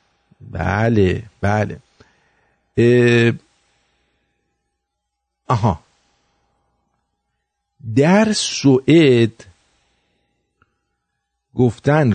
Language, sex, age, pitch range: English, male, 50-69, 105-130 Hz